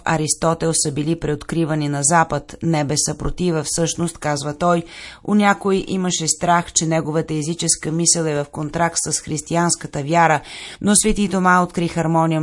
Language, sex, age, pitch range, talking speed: Bulgarian, female, 30-49, 150-170 Hz, 140 wpm